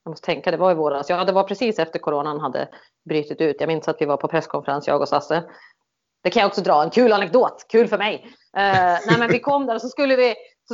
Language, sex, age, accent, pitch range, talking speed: Swedish, female, 30-49, native, 160-235 Hz, 265 wpm